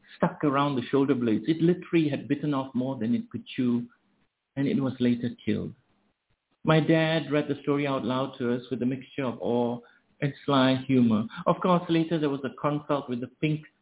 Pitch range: 120-150 Hz